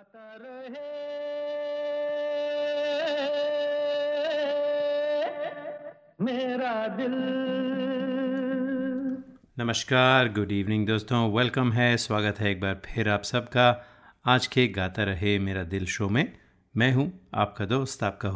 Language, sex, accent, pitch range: Hindi, male, native, 105-135 Hz